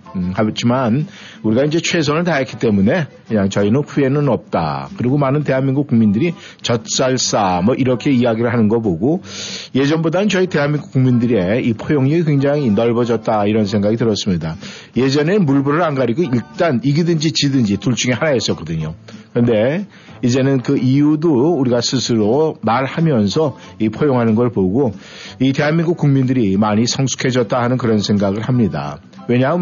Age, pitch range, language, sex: 50-69, 110-150 Hz, Korean, male